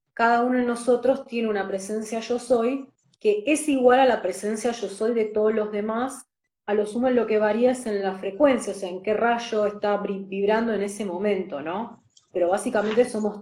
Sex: female